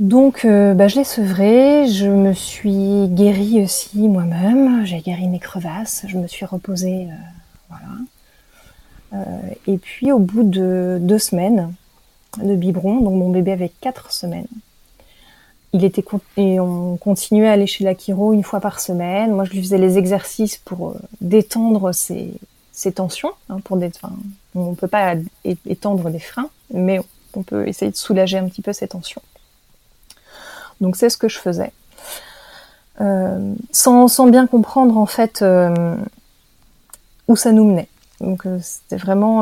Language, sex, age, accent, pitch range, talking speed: French, female, 30-49, French, 185-215 Hz, 160 wpm